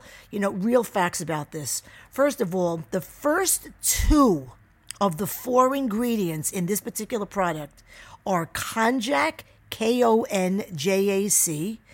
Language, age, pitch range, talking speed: English, 50-69, 180-230 Hz, 140 wpm